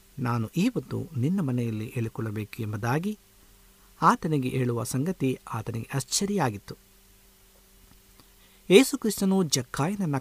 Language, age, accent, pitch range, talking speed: Kannada, 50-69, native, 100-165 Hz, 90 wpm